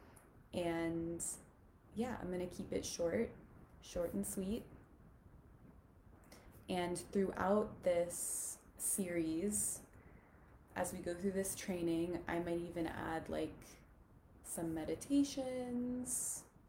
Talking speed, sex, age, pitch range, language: 95 wpm, female, 20-39, 165-210 Hz, English